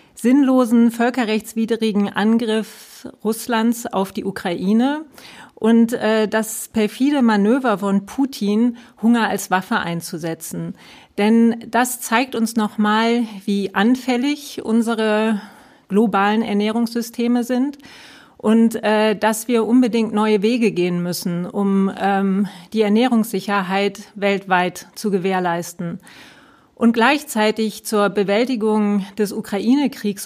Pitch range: 200-235 Hz